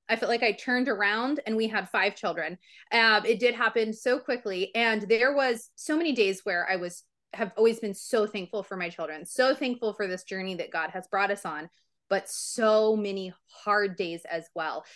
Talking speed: 210 wpm